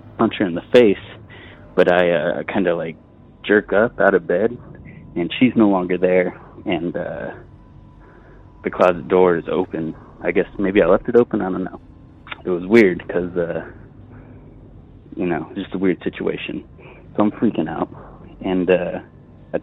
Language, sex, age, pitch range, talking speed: English, male, 20-39, 90-110 Hz, 165 wpm